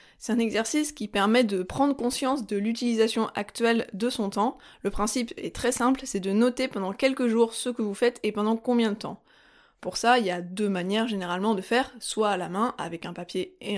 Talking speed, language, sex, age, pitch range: 225 wpm, French, female, 20-39, 205-245 Hz